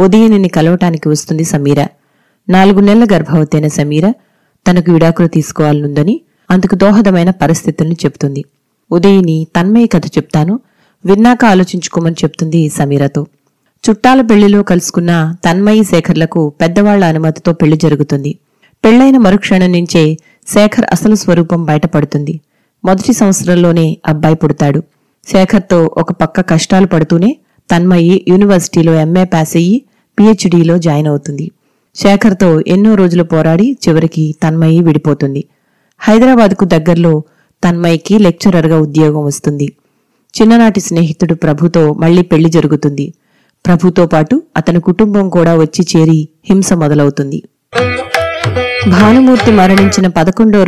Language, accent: Telugu, native